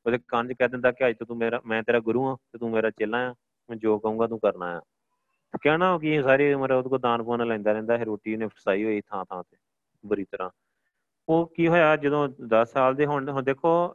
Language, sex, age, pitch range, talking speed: Punjabi, male, 30-49, 110-135 Hz, 215 wpm